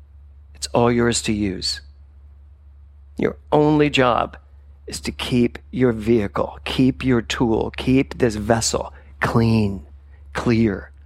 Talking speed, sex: 115 wpm, male